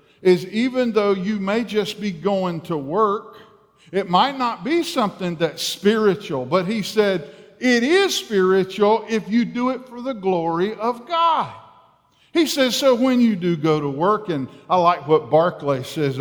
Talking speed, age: 175 wpm, 50-69